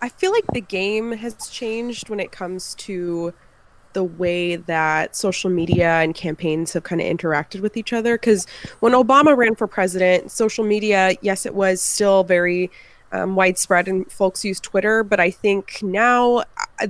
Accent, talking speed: American, 175 wpm